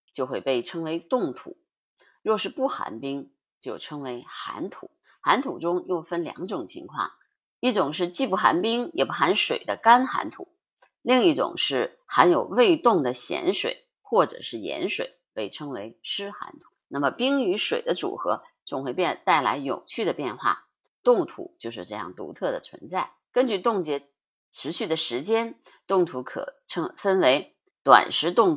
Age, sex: 30-49, female